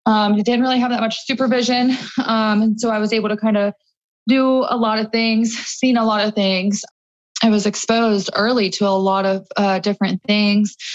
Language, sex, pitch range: English, female, 195-230 Hz